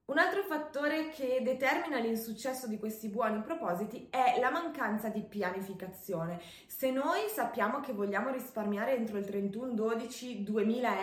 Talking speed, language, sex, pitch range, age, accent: 140 wpm, Italian, female, 195-250 Hz, 20-39, native